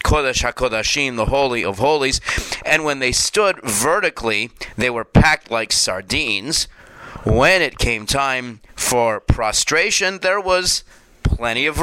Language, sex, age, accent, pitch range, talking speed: English, male, 40-59, American, 120-150 Hz, 130 wpm